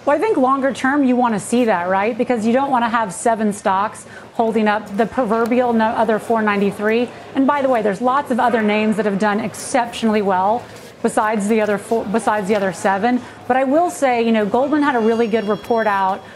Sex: female